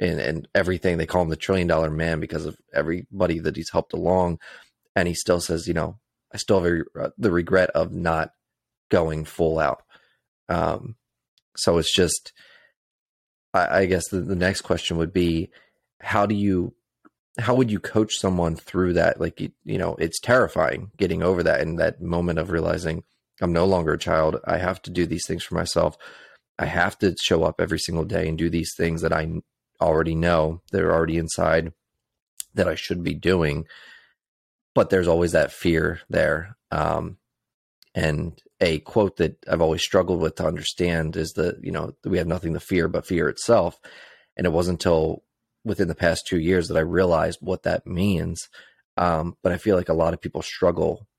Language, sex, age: English, male, 30-49